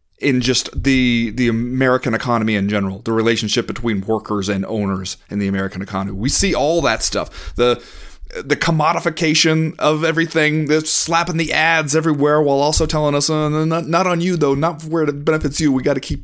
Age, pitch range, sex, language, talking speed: 30-49, 105-155 Hz, male, English, 190 wpm